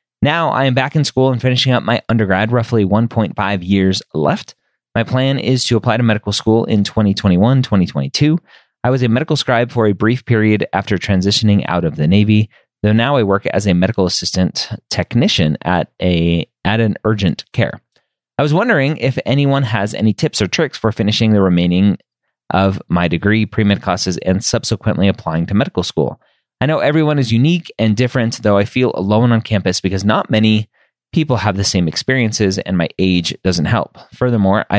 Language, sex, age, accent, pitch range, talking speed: English, male, 30-49, American, 95-125 Hz, 185 wpm